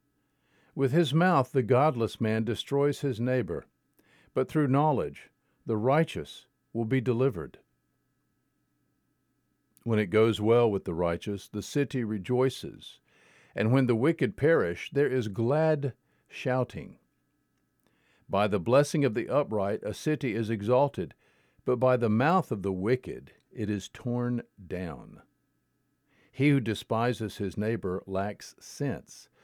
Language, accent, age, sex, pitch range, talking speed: English, American, 50-69, male, 110-140 Hz, 130 wpm